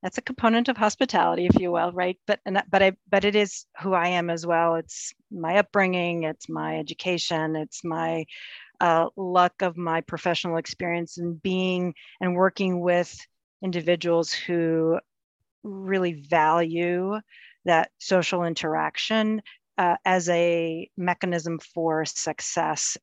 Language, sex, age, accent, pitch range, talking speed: English, female, 40-59, American, 165-190 Hz, 140 wpm